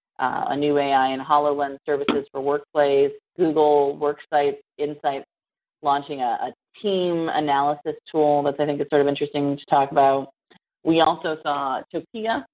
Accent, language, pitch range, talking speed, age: American, English, 140-165 Hz, 155 wpm, 30-49